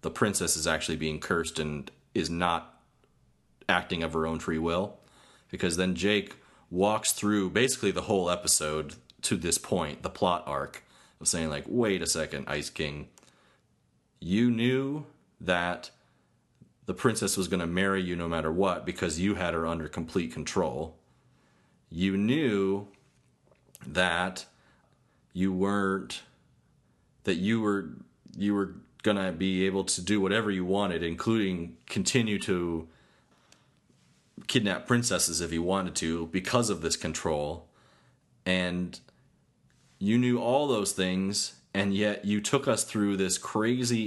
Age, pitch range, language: 30-49, 85-105 Hz, English